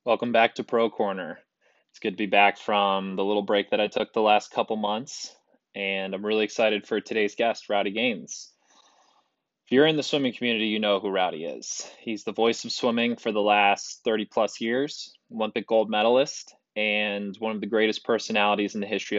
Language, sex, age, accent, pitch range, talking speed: English, male, 20-39, American, 100-115 Hz, 200 wpm